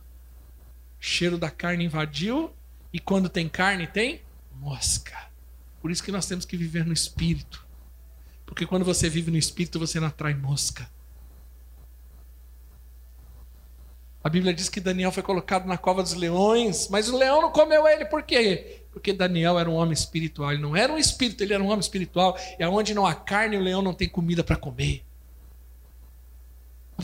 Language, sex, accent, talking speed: Portuguese, male, Brazilian, 170 wpm